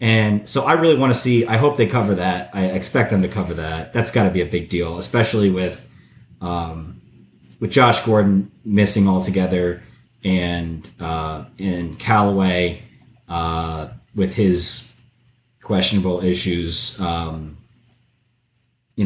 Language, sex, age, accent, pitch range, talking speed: English, male, 30-49, American, 90-120 Hz, 140 wpm